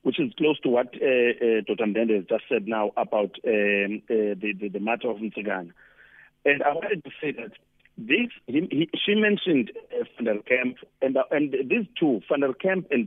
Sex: male